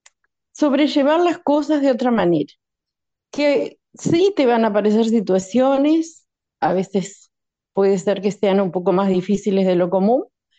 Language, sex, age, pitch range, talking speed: Spanish, female, 40-59, 195-265 Hz, 145 wpm